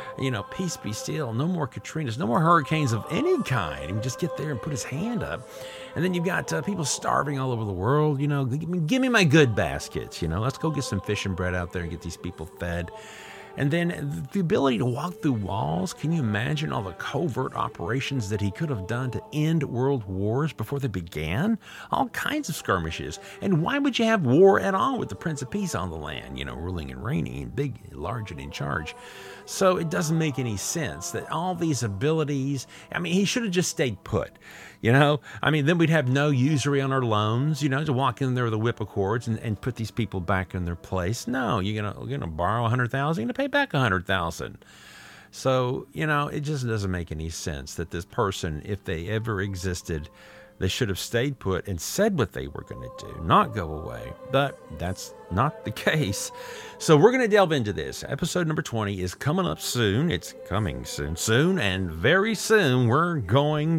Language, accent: English, American